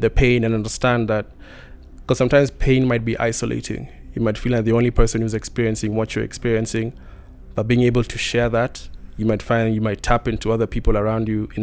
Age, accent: 20-39, South African